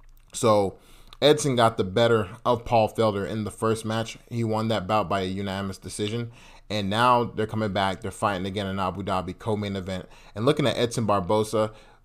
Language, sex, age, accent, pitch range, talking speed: English, male, 30-49, American, 100-120 Hz, 190 wpm